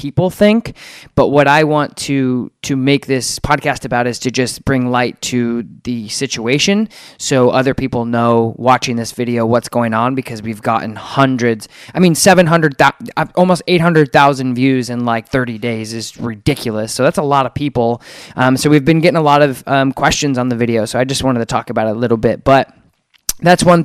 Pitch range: 115-145 Hz